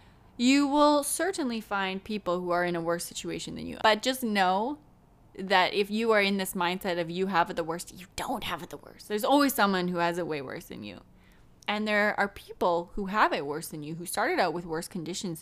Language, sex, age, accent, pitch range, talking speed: English, female, 10-29, American, 170-210 Hz, 240 wpm